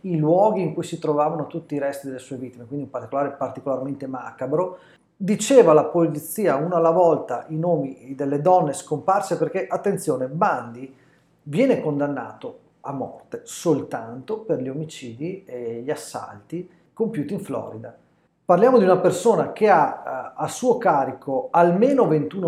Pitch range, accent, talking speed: 140-185 Hz, native, 150 wpm